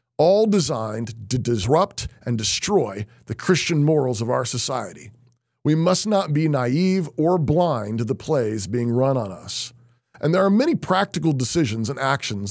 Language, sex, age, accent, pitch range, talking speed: English, male, 40-59, American, 120-160 Hz, 165 wpm